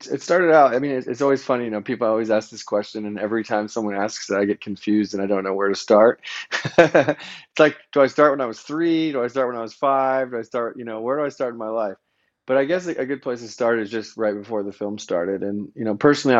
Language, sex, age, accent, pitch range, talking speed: English, male, 30-49, American, 105-120 Hz, 285 wpm